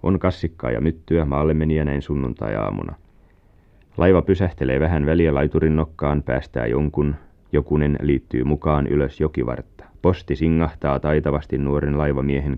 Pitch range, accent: 70-85 Hz, native